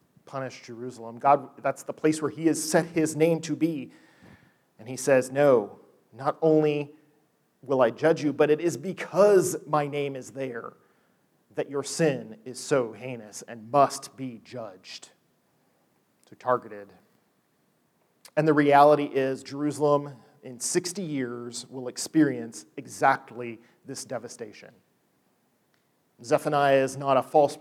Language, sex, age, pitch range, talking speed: English, male, 40-59, 130-155 Hz, 135 wpm